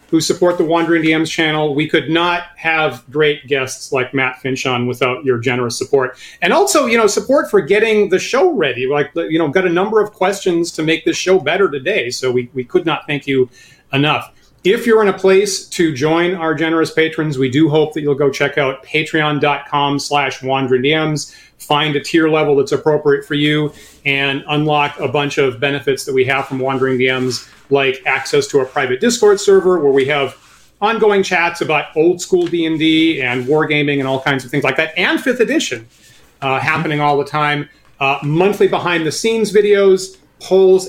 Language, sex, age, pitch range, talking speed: English, male, 40-59, 140-180 Hz, 195 wpm